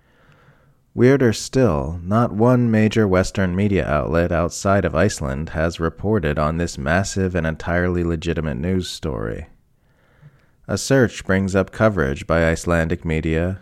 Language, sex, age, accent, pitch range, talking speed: English, male, 30-49, American, 80-95 Hz, 130 wpm